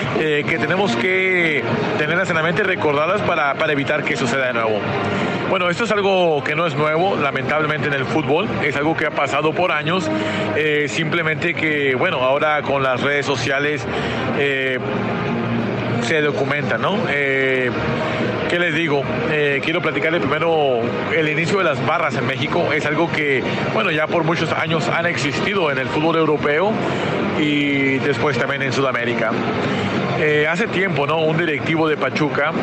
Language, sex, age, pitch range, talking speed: Spanish, male, 40-59, 140-165 Hz, 165 wpm